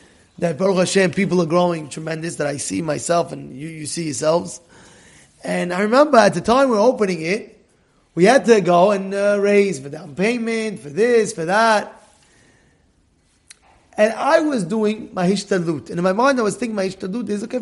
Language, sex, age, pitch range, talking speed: English, male, 30-49, 155-220 Hz, 195 wpm